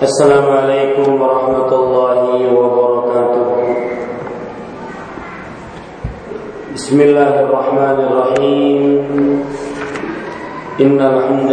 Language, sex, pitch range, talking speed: Malay, male, 130-135 Hz, 55 wpm